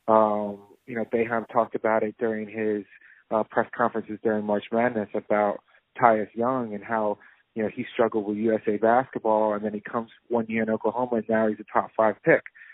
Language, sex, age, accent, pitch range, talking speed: English, male, 30-49, American, 110-125 Hz, 200 wpm